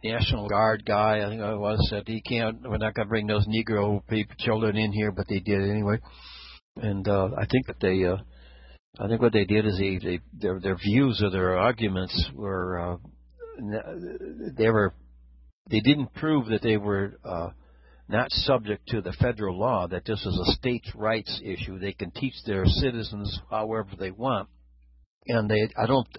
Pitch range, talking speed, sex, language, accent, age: 95-115 Hz, 190 wpm, male, English, American, 60-79